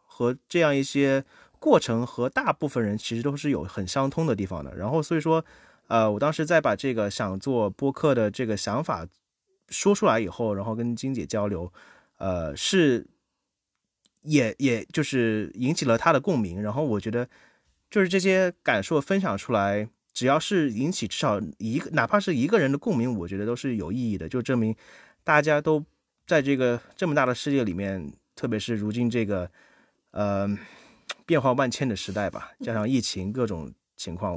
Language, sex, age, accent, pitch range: English, male, 30-49, Chinese, 105-145 Hz